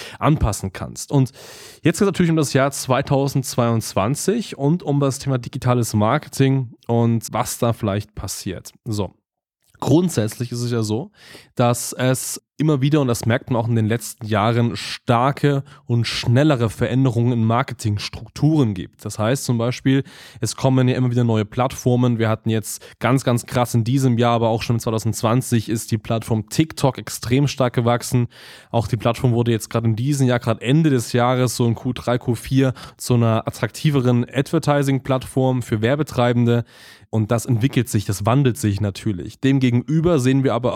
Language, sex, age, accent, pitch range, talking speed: German, male, 20-39, German, 115-135 Hz, 170 wpm